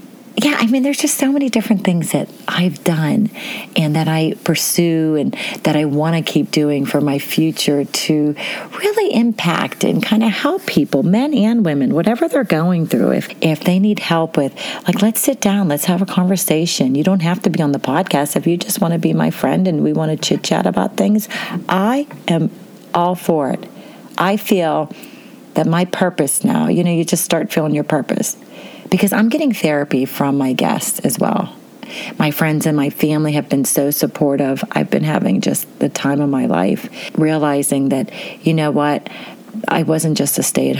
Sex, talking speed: female, 200 wpm